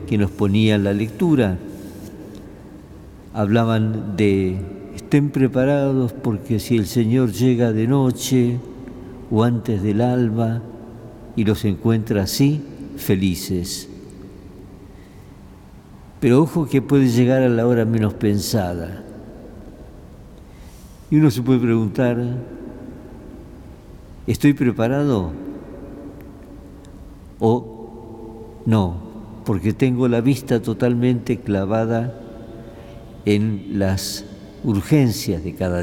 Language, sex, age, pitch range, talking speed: Spanish, male, 50-69, 95-120 Hz, 90 wpm